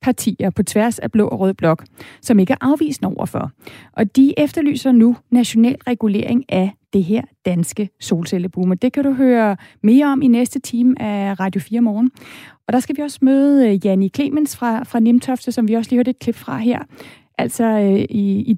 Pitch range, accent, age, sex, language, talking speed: 200-250 Hz, native, 30-49, female, Danish, 195 wpm